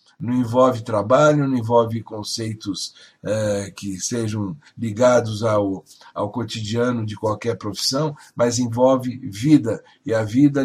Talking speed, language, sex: 125 wpm, Portuguese, male